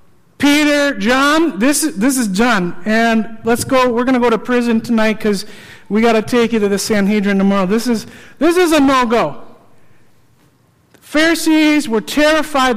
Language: English